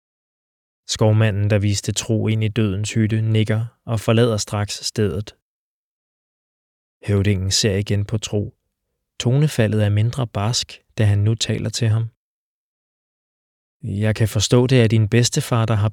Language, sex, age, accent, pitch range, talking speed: Danish, male, 20-39, native, 105-120 Hz, 140 wpm